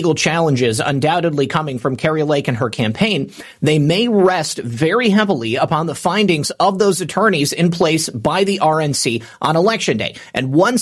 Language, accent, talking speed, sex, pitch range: English, American, 165 wpm, male, 145-195 Hz